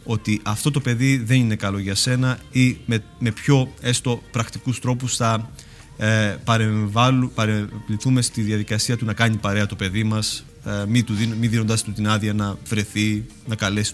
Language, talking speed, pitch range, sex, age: Greek, 170 wpm, 105-125 Hz, male, 30-49